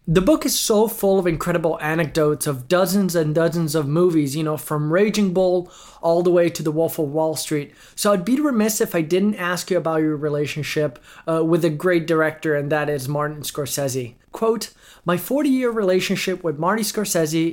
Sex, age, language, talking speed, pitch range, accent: male, 30-49, English, 195 wpm, 155-195 Hz, American